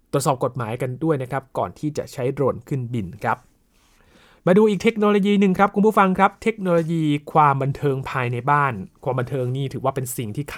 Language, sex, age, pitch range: Thai, male, 20-39, 125-165 Hz